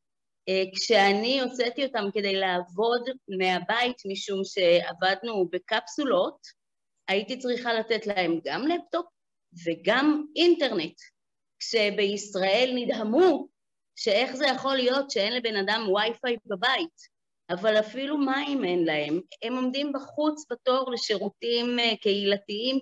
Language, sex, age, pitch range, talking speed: Hebrew, female, 30-49, 185-250 Hz, 105 wpm